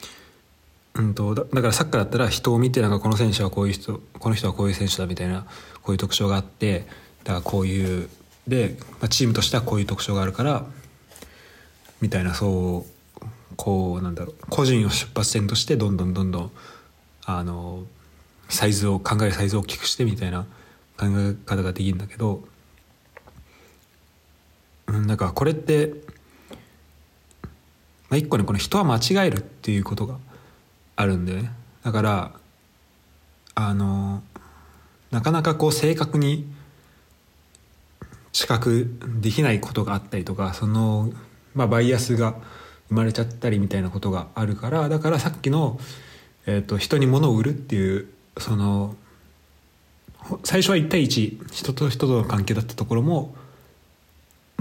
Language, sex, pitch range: Japanese, male, 90-120 Hz